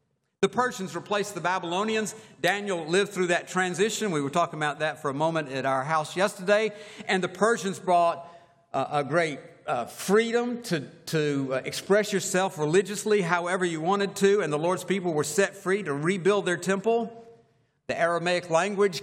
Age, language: 50-69, English